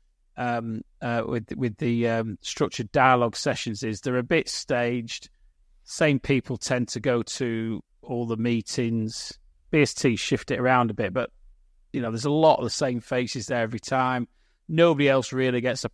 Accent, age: British, 30-49